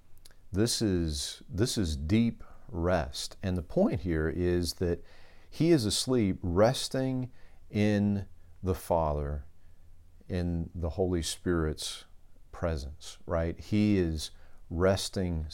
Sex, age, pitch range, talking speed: male, 40-59, 80-100 Hz, 110 wpm